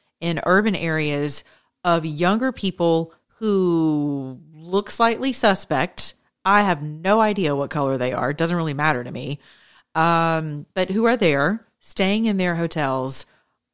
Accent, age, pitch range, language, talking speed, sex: American, 40-59, 145-200 Hz, English, 145 wpm, female